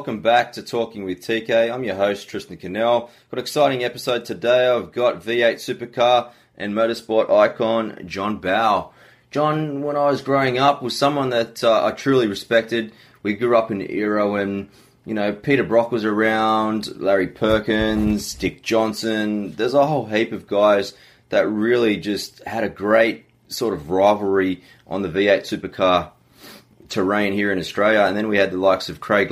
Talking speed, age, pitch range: 175 wpm, 20-39, 100-120 Hz